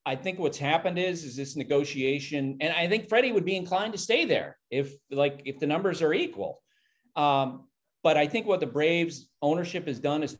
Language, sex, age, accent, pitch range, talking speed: English, male, 40-59, American, 135-165 Hz, 210 wpm